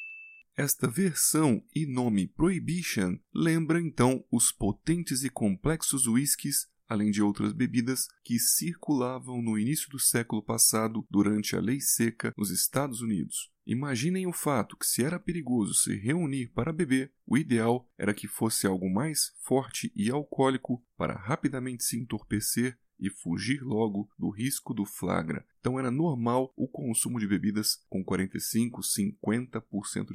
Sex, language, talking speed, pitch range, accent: male, Portuguese, 140 wpm, 110-150 Hz, Brazilian